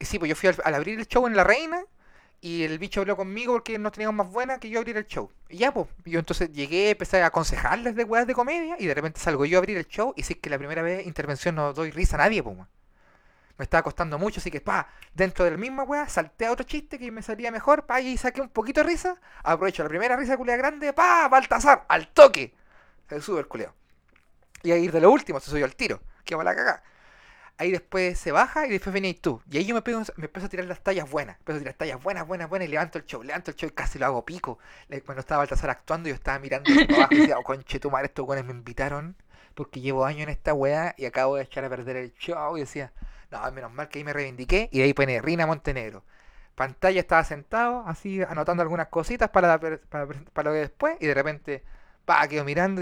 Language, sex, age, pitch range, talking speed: Spanish, male, 30-49, 145-220 Hz, 250 wpm